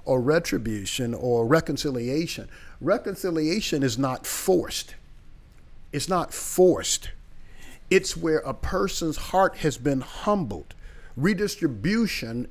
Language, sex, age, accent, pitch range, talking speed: English, male, 50-69, American, 120-160 Hz, 95 wpm